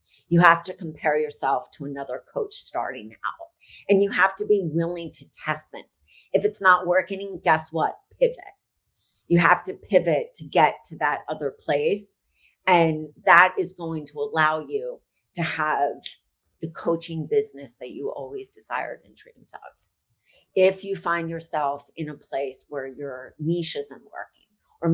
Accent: American